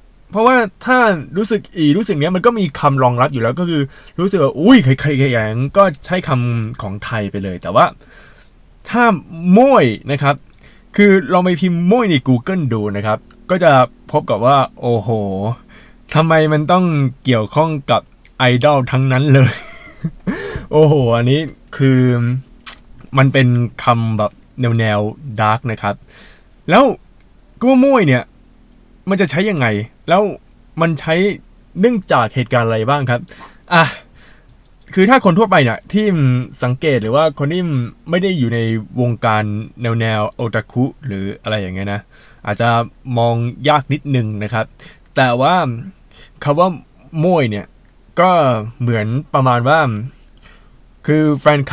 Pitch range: 115-160 Hz